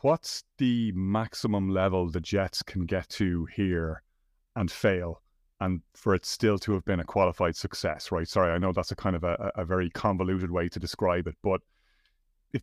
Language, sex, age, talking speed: English, male, 30-49, 190 wpm